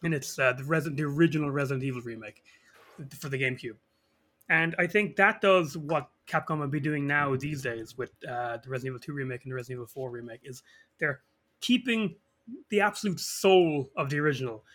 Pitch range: 140-185 Hz